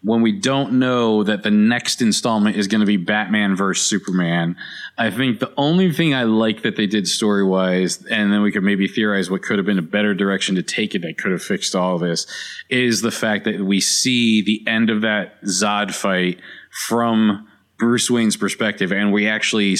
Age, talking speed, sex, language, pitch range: 20-39, 205 wpm, male, English, 105-130 Hz